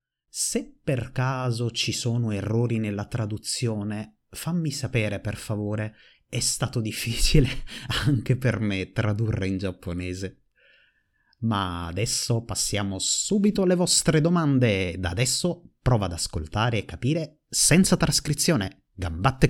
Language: Italian